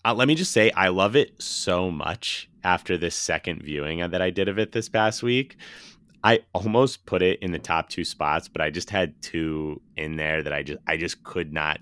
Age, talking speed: 30-49, 230 wpm